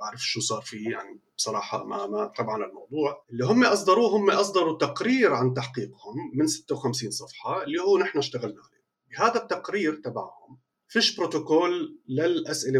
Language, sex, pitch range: Arabic, male, 125-205 Hz